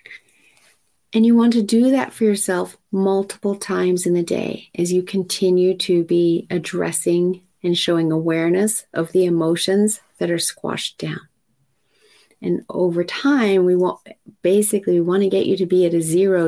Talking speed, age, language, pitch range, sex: 165 wpm, 30-49, English, 170-200 Hz, female